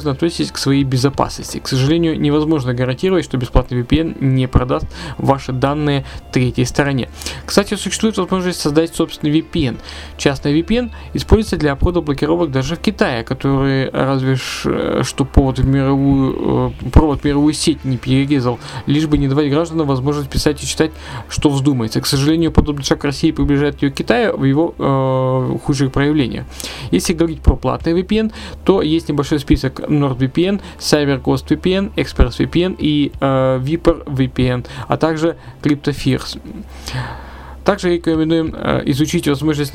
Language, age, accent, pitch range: Russian, 20-39, native, 130-155 Hz